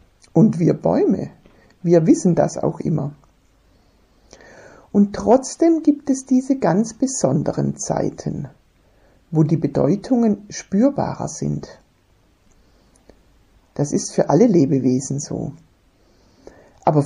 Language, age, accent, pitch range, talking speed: German, 60-79, German, 130-200 Hz, 100 wpm